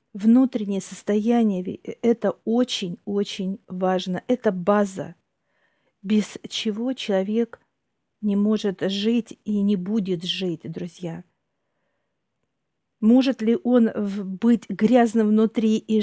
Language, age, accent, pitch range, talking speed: Russian, 50-69, native, 195-230 Hz, 95 wpm